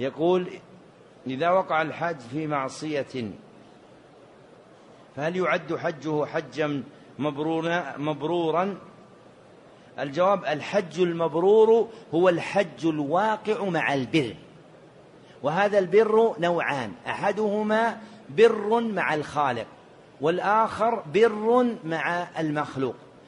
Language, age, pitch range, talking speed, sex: Arabic, 40-59, 160-205 Hz, 75 wpm, male